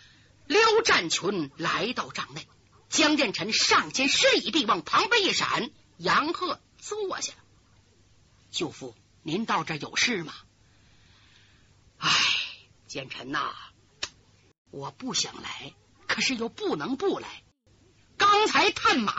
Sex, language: female, Chinese